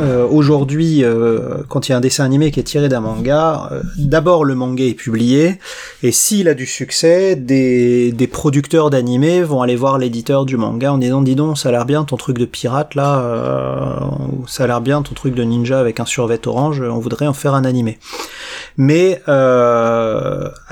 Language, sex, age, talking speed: French, male, 30-49, 200 wpm